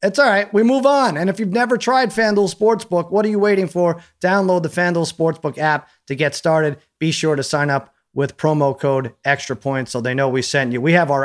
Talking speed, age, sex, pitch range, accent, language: 240 wpm, 30-49, male, 130-175 Hz, American, English